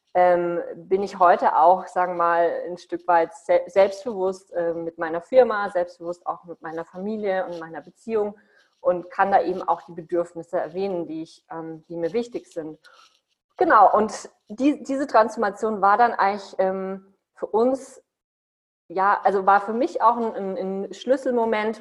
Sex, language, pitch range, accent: female, English, 175-210 Hz, German